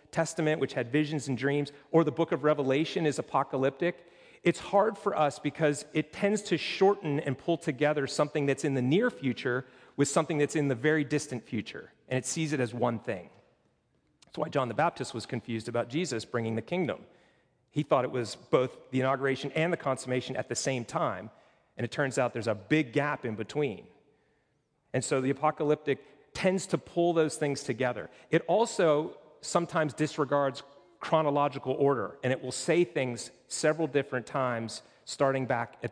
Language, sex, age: English, male, 40-59